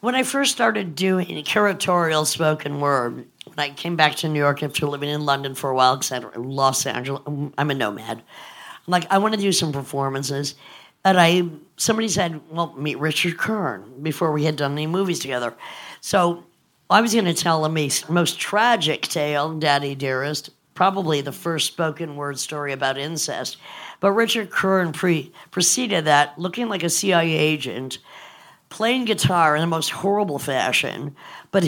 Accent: American